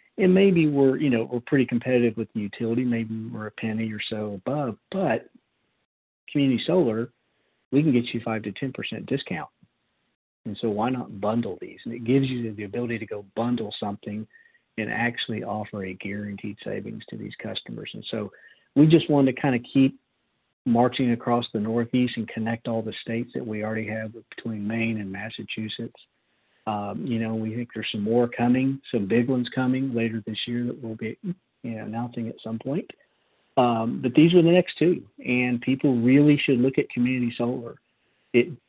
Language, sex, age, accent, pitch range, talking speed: English, male, 50-69, American, 110-125 Hz, 190 wpm